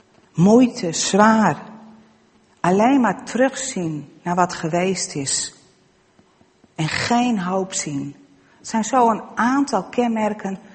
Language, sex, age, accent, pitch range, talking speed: Dutch, female, 40-59, Dutch, 170-225 Hz, 105 wpm